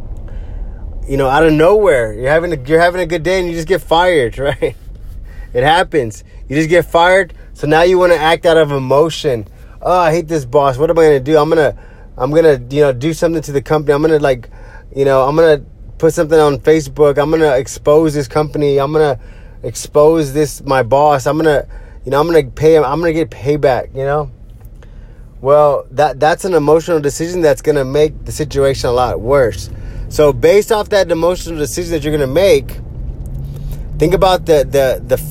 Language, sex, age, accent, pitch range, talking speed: English, male, 20-39, American, 125-160 Hz, 200 wpm